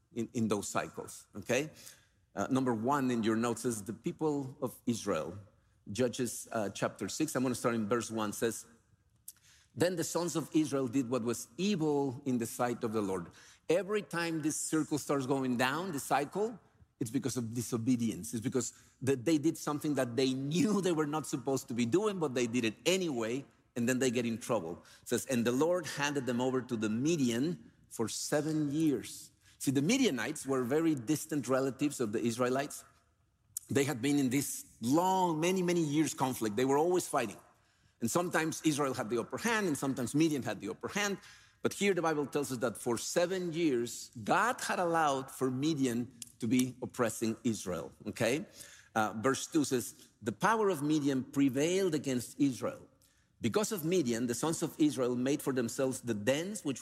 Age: 50-69